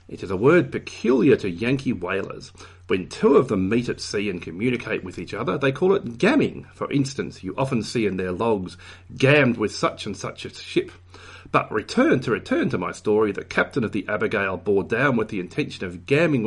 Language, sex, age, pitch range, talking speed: English, male, 40-59, 95-130 Hz, 210 wpm